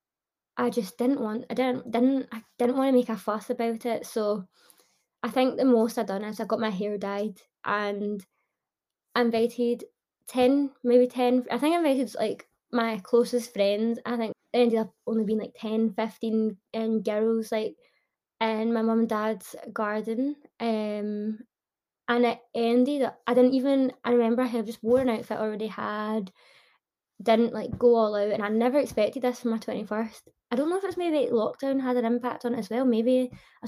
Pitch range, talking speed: 215-245 Hz, 195 wpm